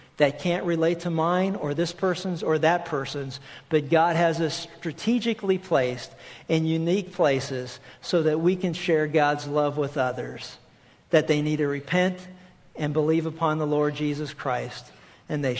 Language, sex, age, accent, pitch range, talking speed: English, male, 50-69, American, 150-175 Hz, 165 wpm